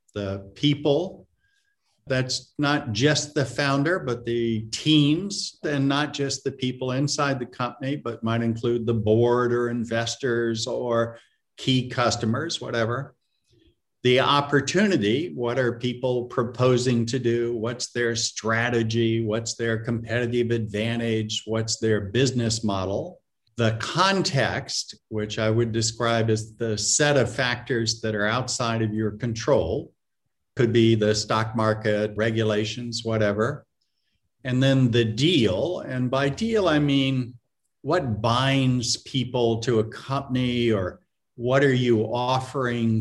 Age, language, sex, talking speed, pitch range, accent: 50-69, English, male, 130 wpm, 110-130 Hz, American